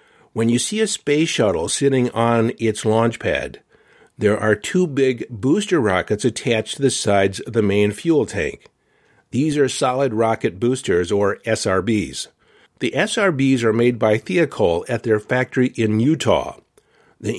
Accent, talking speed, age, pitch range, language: American, 155 wpm, 50-69, 110-130 Hz, English